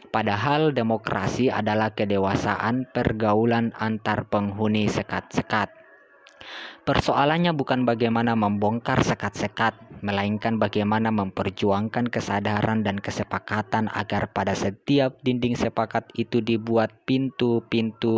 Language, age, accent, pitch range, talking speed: Indonesian, 20-39, native, 105-120 Hz, 90 wpm